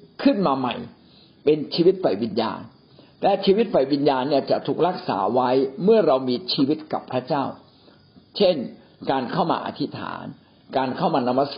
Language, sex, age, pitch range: Thai, male, 60-79, 135-195 Hz